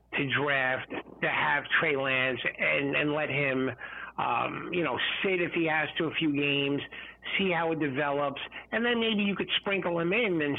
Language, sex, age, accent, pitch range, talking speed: English, male, 50-69, American, 135-170 Hz, 195 wpm